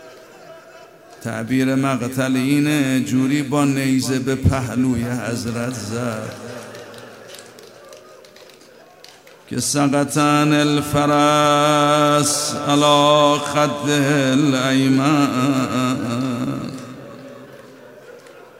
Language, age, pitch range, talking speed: Persian, 50-69, 125-145 Hz, 50 wpm